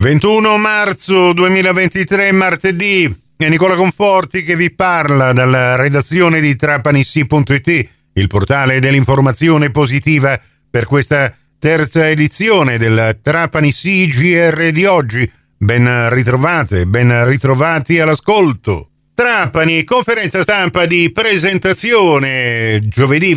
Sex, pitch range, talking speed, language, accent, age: male, 135-185 Hz, 100 wpm, Italian, native, 50-69